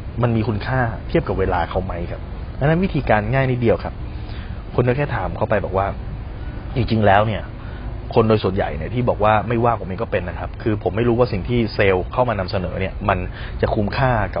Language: Thai